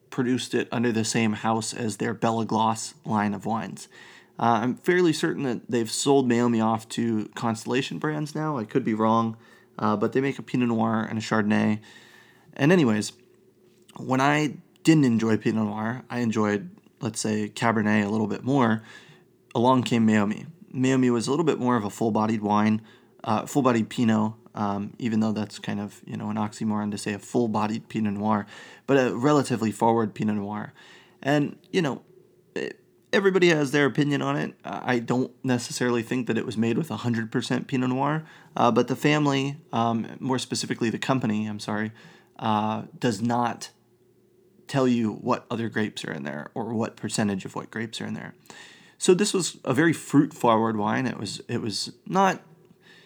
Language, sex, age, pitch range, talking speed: English, male, 20-39, 110-130 Hz, 180 wpm